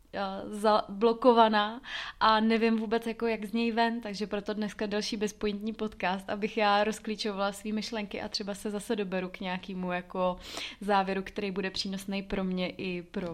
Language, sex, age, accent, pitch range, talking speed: Czech, female, 20-39, native, 190-210 Hz, 155 wpm